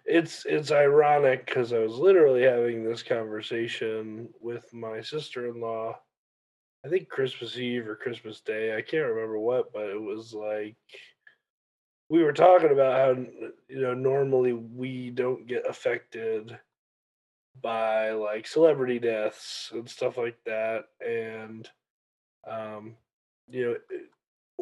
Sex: male